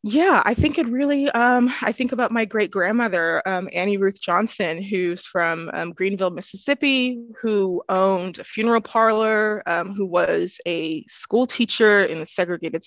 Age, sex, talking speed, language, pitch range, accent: 20-39, female, 165 wpm, English, 180-225 Hz, American